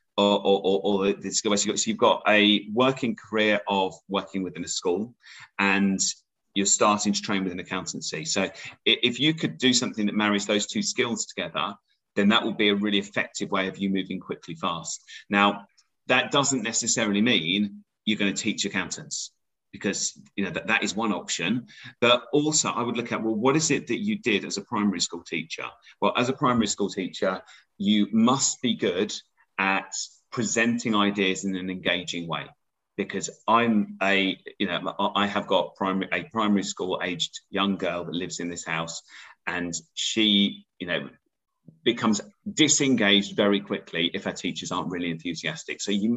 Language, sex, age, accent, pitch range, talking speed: English, male, 30-49, British, 95-115 Hz, 180 wpm